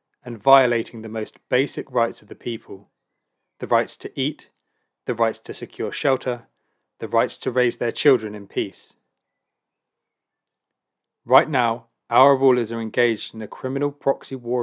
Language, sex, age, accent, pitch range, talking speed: English, male, 30-49, British, 115-135 Hz, 150 wpm